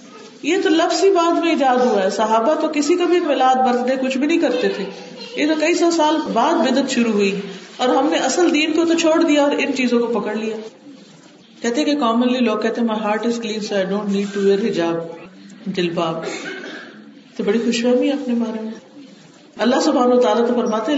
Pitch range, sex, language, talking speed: 215-275 Hz, female, Urdu, 210 wpm